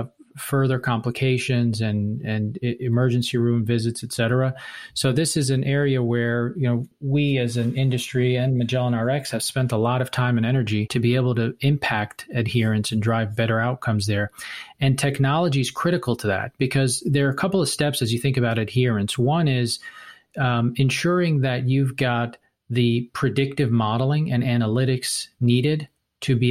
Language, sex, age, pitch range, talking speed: English, male, 40-59, 115-135 Hz, 170 wpm